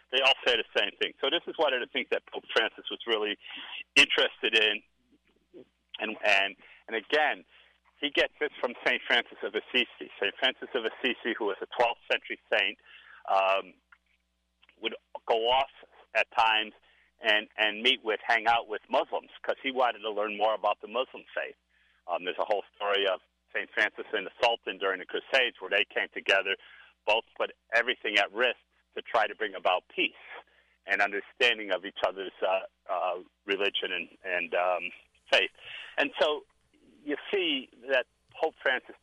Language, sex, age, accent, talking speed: English, male, 50-69, American, 175 wpm